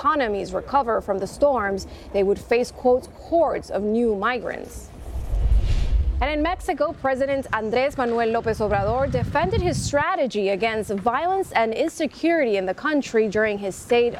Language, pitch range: English, 210-265 Hz